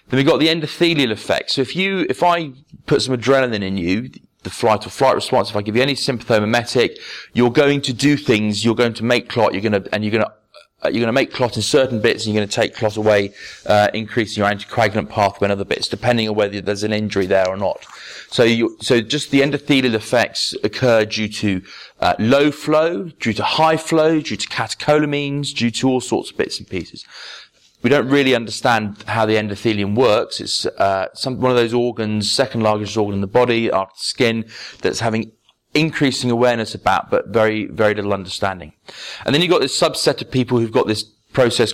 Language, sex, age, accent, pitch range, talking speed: English, male, 30-49, British, 105-130 Hz, 215 wpm